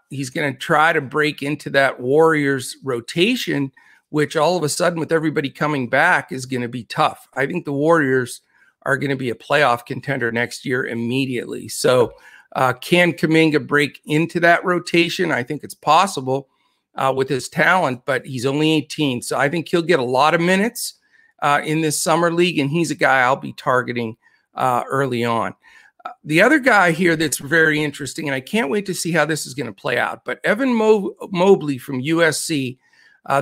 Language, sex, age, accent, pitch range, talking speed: English, male, 50-69, American, 135-170 Hz, 195 wpm